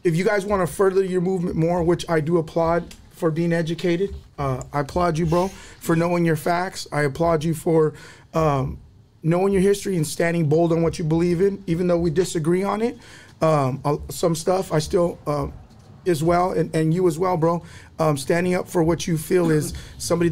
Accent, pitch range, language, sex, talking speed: American, 165-195 Hz, English, male, 205 wpm